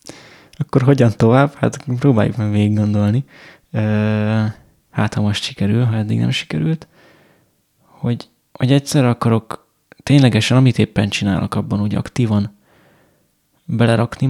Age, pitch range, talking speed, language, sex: 20-39, 110-135 Hz, 120 wpm, Hungarian, male